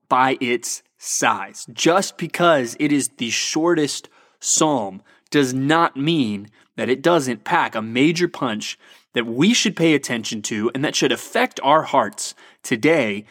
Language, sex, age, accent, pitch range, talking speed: English, male, 30-49, American, 125-170 Hz, 150 wpm